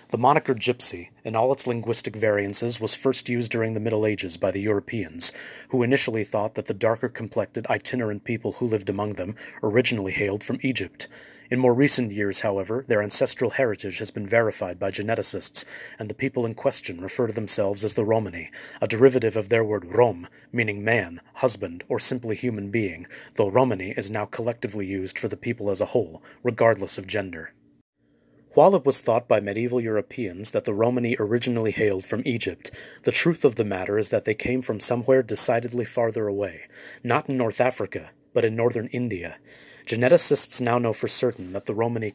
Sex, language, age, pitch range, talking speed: male, English, 30-49, 105-125 Hz, 185 wpm